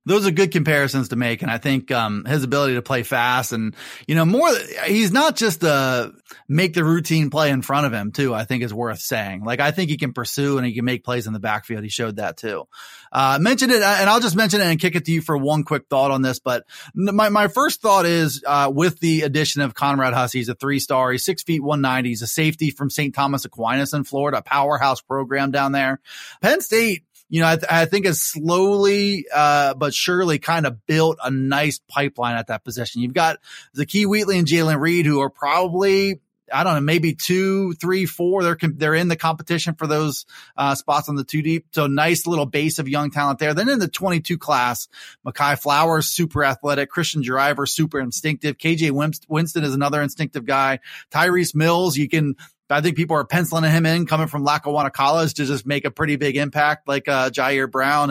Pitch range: 135-165 Hz